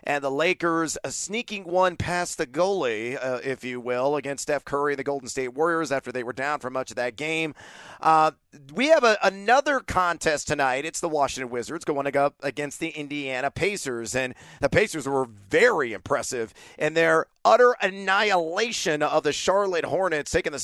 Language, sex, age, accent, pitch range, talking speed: English, male, 40-59, American, 145-185 Hz, 180 wpm